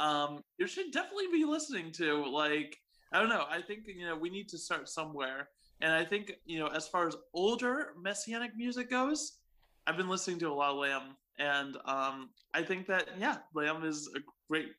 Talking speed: 205 wpm